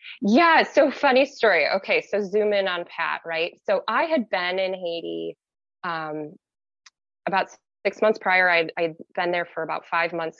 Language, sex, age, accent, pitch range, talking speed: English, female, 20-39, American, 170-255 Hz, 175 wpm